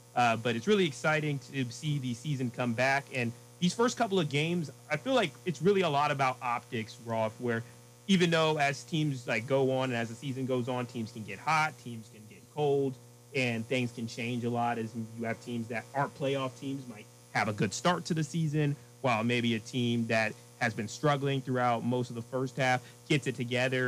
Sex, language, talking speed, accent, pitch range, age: male, English, 220 wpm, American, 115-135 Hz, 30-49